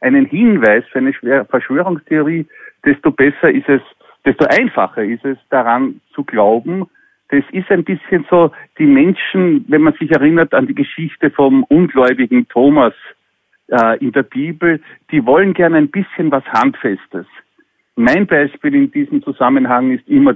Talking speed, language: 150 wpm, German